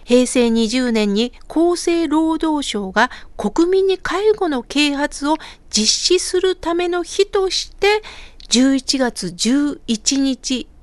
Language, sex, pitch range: Japanese, female, 230-310 Hz